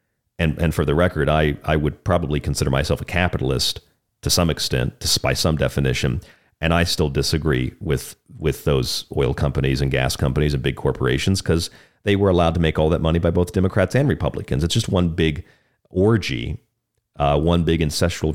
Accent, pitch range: American, 75-95 Hz